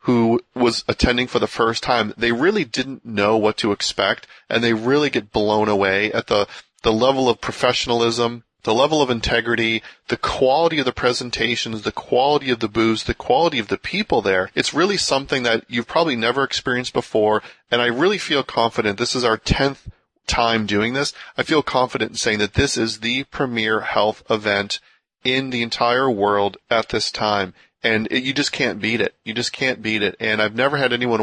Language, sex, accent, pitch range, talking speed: English, male, American, 110-125 Hz, 200 wpm